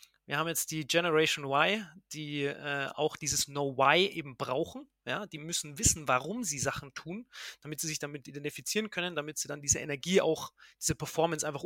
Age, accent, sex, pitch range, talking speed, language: 30-49, German, male, 145-180 Hz, 180 wpm, German